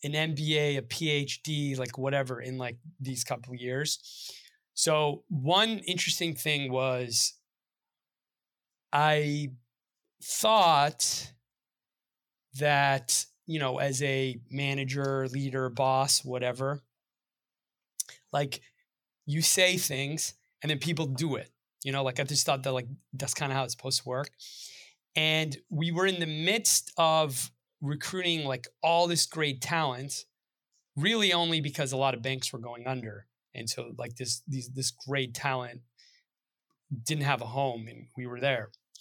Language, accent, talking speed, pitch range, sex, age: English, American, 140 wpm, 130-155 Hz, male, 20-39